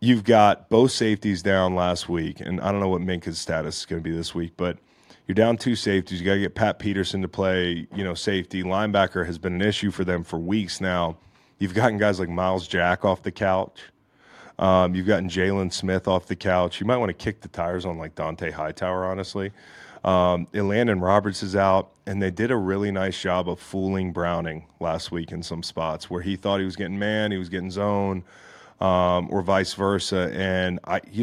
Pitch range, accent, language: 90-100 Hz, American, English